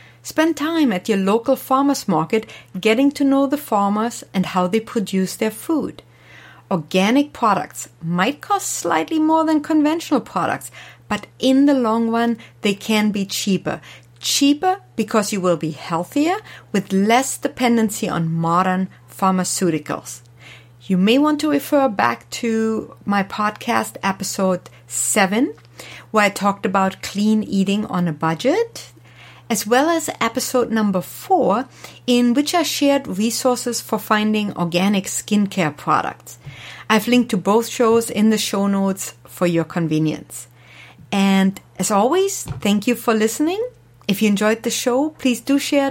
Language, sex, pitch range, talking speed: English, female, 190-265 Hz, 145 wpm